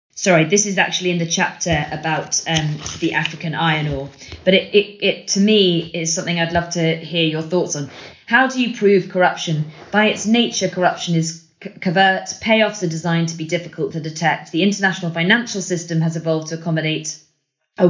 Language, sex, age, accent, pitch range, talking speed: English, female, 20-39, British, 160-195 Hz, 190 wpm